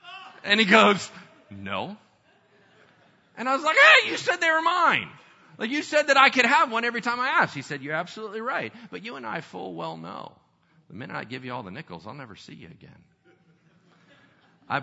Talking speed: 210 wpm